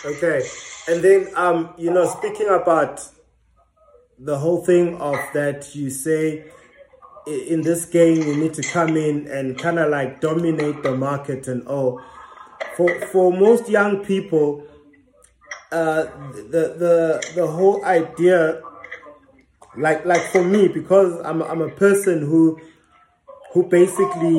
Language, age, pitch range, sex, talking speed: English, 20-39, 155-180 Hz, male, 135 wpm